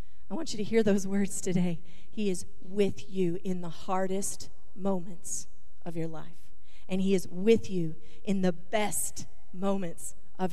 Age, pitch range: 40-59, 170-220 Hz